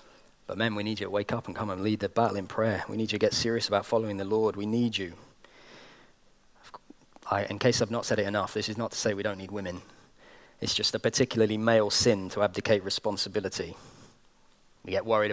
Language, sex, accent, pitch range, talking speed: English, male, British, 105-125 Hz, 225 wpm